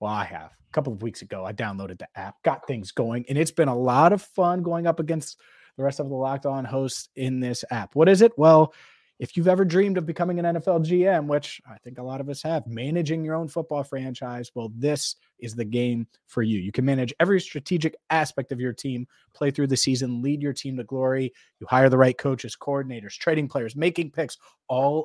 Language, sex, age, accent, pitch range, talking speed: English, male, 30-49, American, 115-155 Hz, 230 wpm